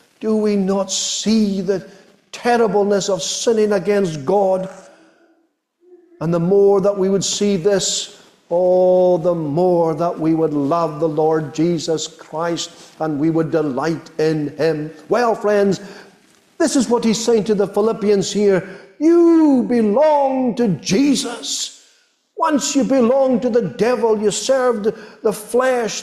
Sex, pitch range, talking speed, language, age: male, 175-250 Hz, 140 wpm, English, 60-79